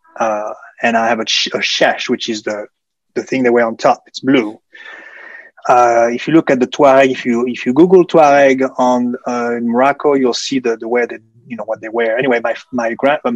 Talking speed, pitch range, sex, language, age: 230 wpm, 115-135 Hz, male, English, 30-49